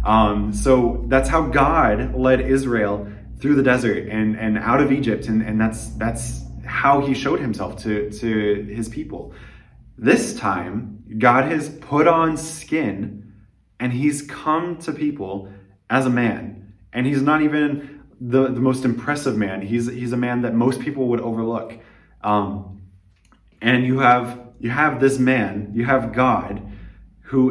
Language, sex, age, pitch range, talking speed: English, male, 20-39, 100-130 Hz, 155 wpm